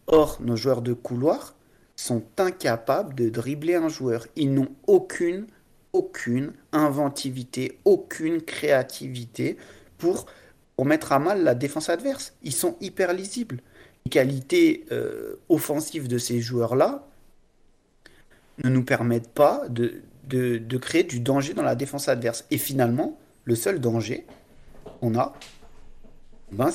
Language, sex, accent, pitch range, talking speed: French, male, French, 120-165 Hz, 130 wpm